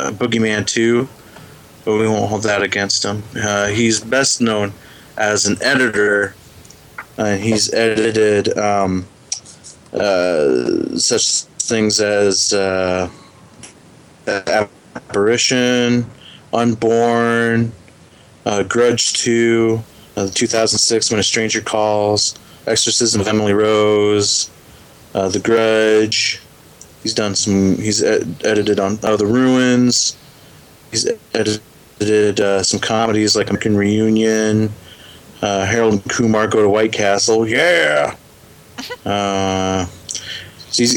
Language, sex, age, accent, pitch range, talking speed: English, male, 20-39, American, 100-115 Hz, 105 wpm